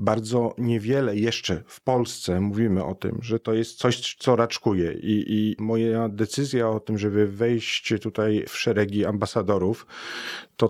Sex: male